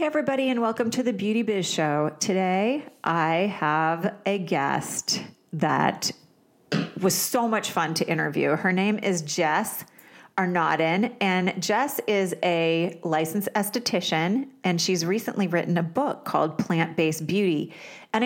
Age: 40-59